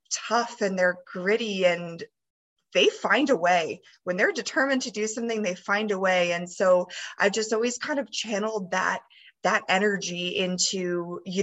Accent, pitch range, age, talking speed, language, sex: American, 180-240 Hz, 20-39, 170 wpm, English, female